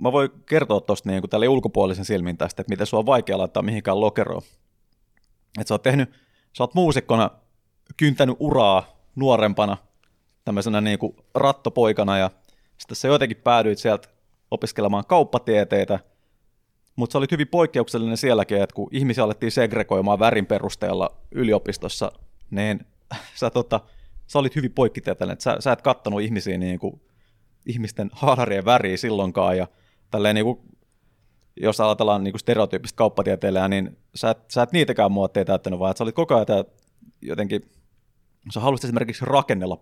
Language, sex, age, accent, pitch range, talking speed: Finnish, male, 30-49, native, 100-125 Hz, 140 wpm